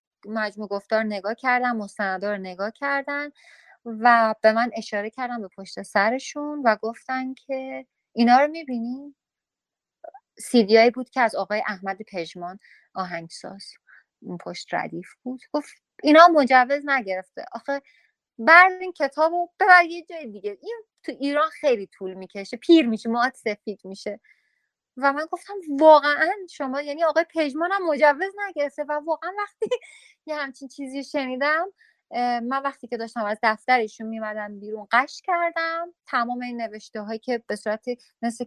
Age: 30-49